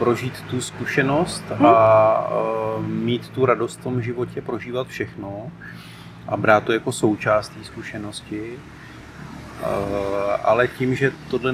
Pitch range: 100-125 Hz